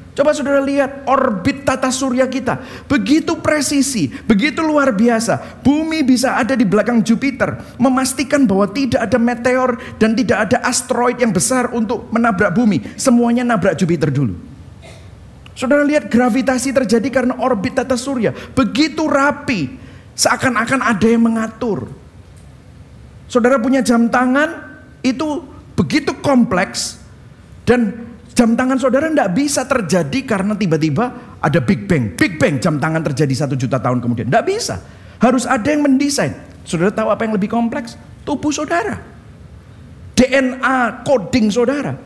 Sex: male